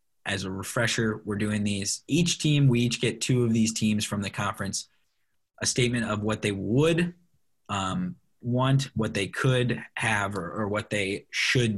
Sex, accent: male, American